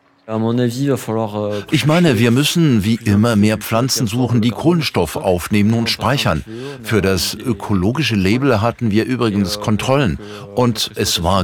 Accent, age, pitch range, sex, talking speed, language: German, 50-69, 90-115 Hz, male, 130 wpm, English